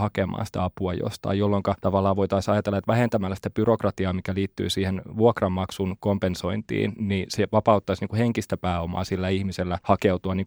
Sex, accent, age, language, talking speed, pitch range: male, native, 20-39, Finnish, 145 wpm, 95-105 Hz